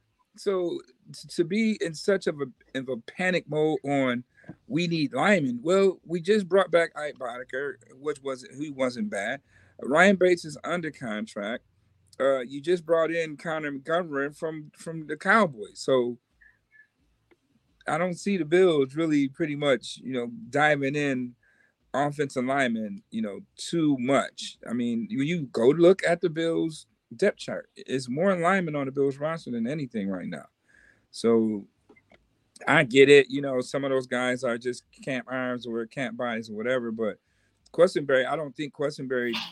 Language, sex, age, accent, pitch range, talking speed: English, male, 40-59, American, 125-175 Hz, 165 wpm